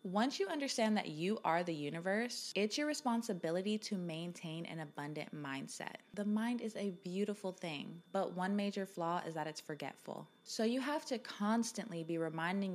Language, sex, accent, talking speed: English, female, American, 175 wpm